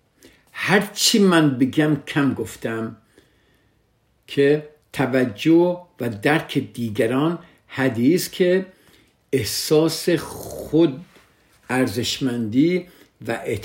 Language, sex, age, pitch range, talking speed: Persian, male, 60-79, 110-140 Hz, 70 wpm